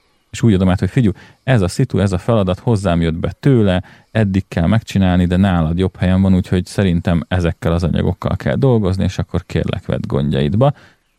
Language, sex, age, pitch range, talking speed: Hungarian, male, 30-49, 90-105 Hz, 195 wpm